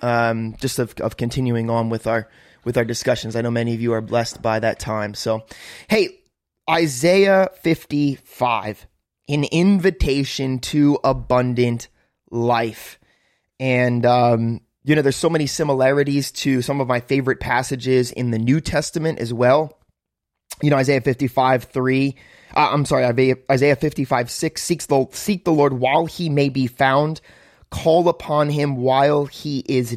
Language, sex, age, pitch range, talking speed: English, male, 30-49, 120-145 Hz, 155 wpm